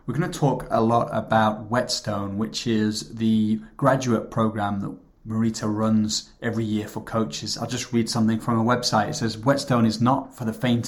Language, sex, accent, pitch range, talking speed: English, male, British, 110-120 Hz, 195 wpm